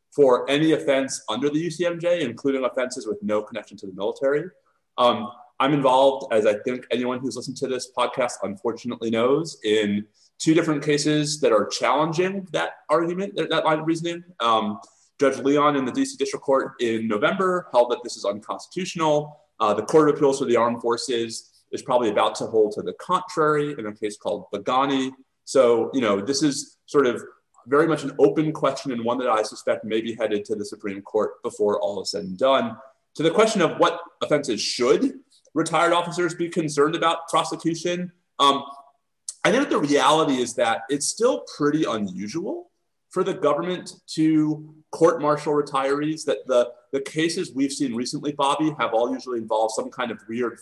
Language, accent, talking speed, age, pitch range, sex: English, American, 185 wpm, 30-49, 125-165 Hz, male